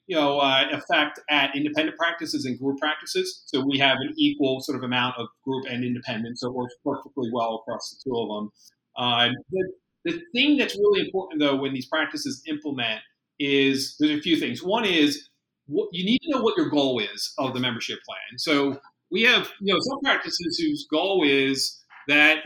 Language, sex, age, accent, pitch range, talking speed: English, male, 40-59, American, 130-205 Hz, 195 wpm